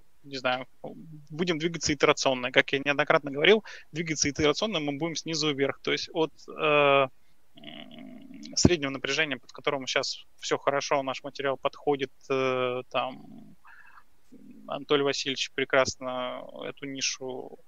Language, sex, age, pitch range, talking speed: Russian, male, 20-39, 130-150 Hz, 120 wpm